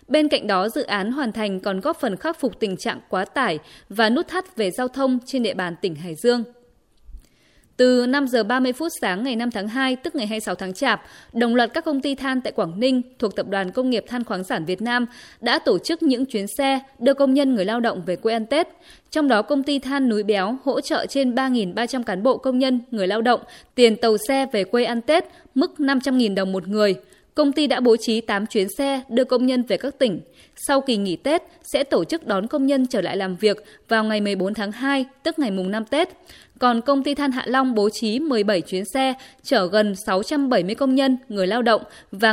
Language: Vietnamese